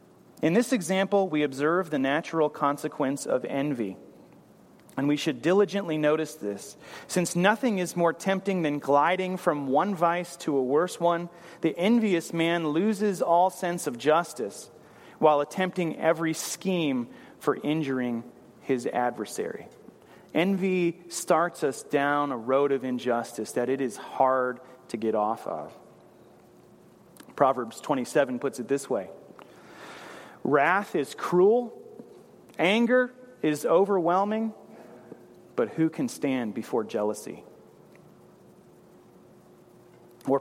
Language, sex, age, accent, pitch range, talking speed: English, male, 30-49, American, 135-185 Hz, 120 wpm